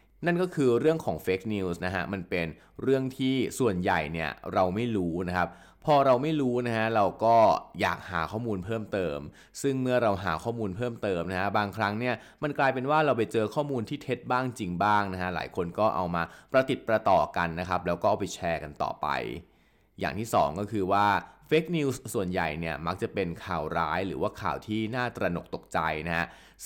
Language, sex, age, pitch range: Thai, male, 20-39, 90-125 Hz